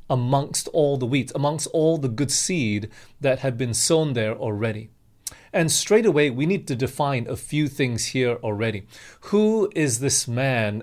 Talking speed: 170 wpm